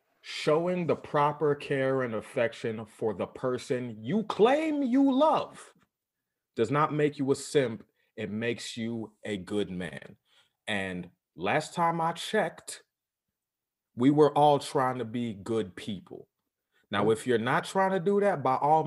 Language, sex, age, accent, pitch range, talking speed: English, male, 30-49, American, 110-155 Hz, 155 wpm